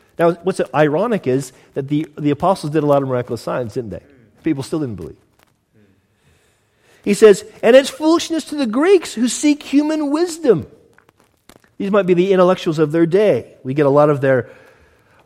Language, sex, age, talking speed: English, male, 40-59, 185 wpm